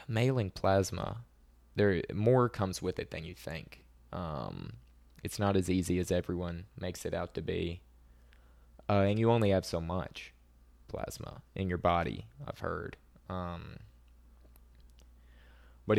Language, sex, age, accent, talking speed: English, male, 20-39, American, 140 wpm